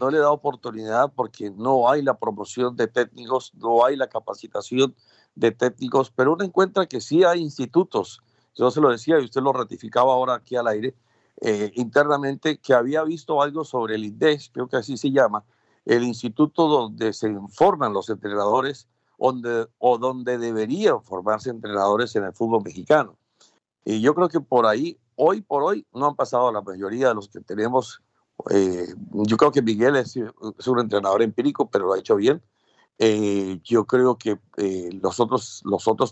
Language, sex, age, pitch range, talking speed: Spanish, male, 50-69, 110-145 Hz, 180 wpm